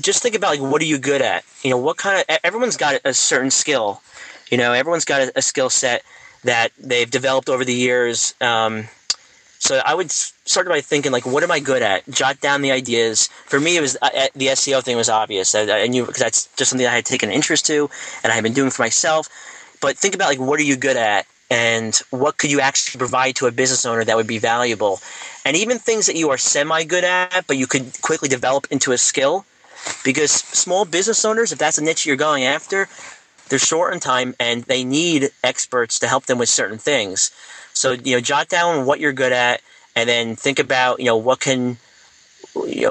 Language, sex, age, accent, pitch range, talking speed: English, male, 30-49, American, 120-145 Hz, 225 wpm